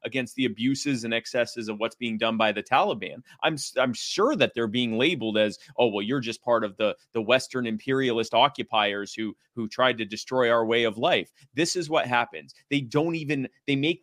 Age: 30-49